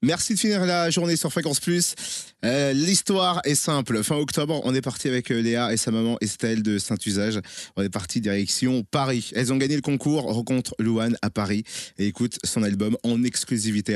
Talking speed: 195 wpm